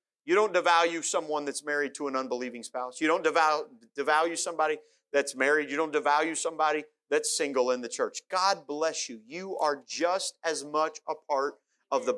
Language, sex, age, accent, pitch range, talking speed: English, male, 40-59, American, 160-205 Hz, 180 wpm